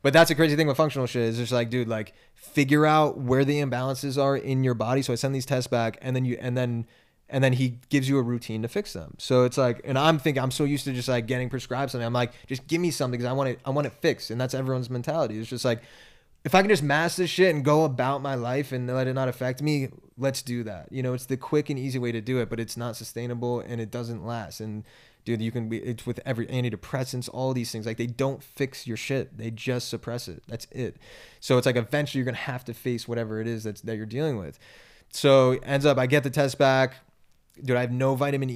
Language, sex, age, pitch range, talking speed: English, male, 20-39, 115-135 Hz, 270 wpm